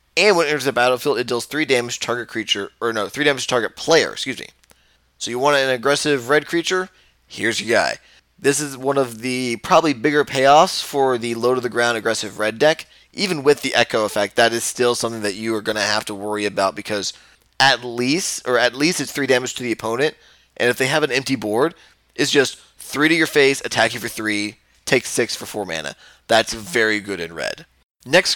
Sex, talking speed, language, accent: male, 225 wpm, English, American